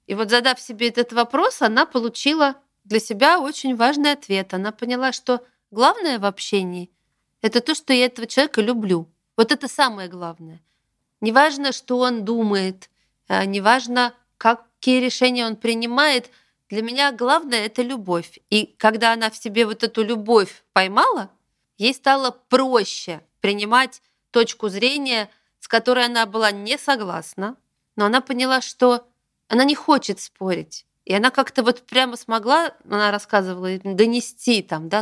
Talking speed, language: 145 wpm, Russian